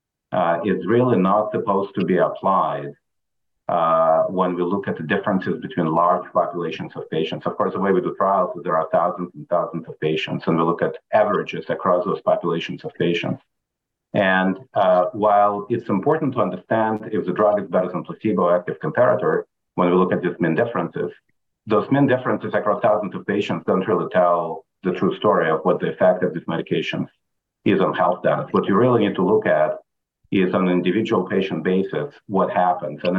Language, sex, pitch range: English, male, 85-100 Hz